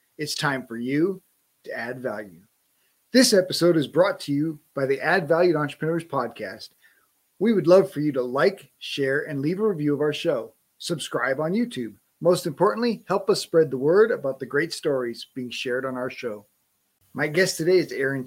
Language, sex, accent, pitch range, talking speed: English, male, American, 130-160 Hz, 190 wpm